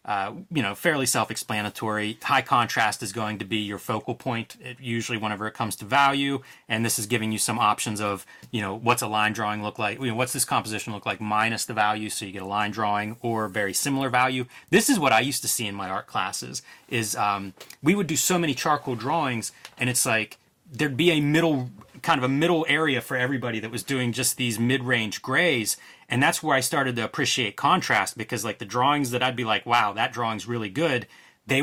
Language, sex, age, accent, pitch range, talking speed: English, male, 30-49, American, 105-135 Hz, 220 wpm